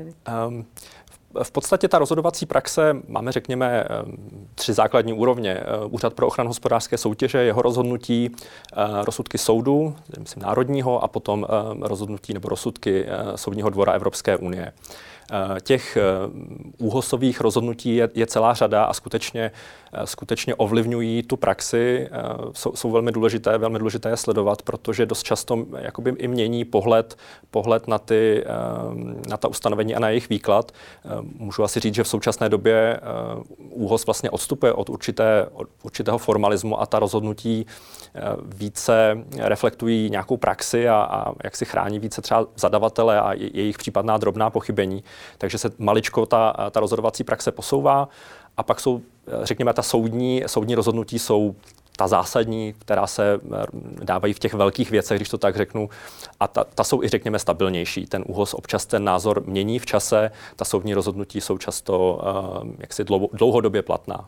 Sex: male